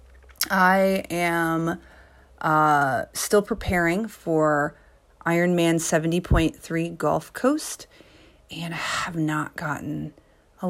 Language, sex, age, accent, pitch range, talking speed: English, female, 30-49, American, 150-180 Hz, 90 wpm